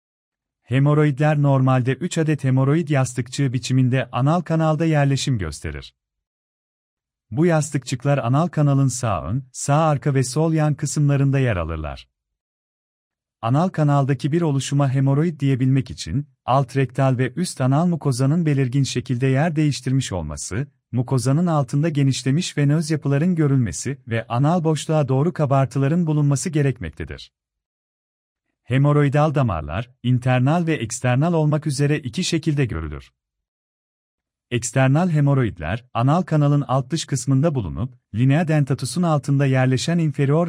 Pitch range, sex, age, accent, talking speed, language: 120-150 Hz, male, 40-59, native, 115 wpm, Turkish